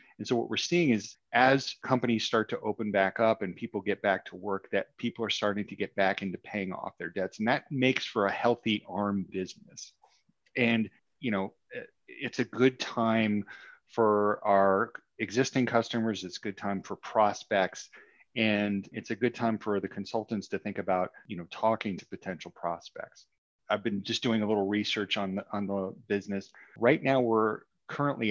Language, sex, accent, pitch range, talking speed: English, male, American, 100-115 Hz, 190 wpm